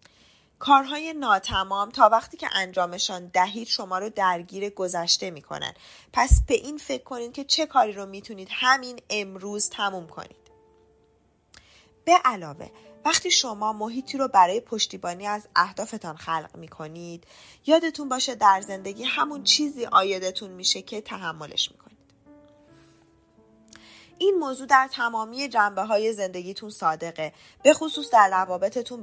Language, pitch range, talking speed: Persian, 180-255 Hz, 125 wpm